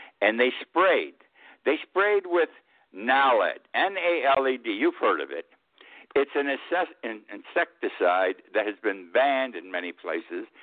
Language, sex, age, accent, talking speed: English, male, 60-79, American, 135 wpm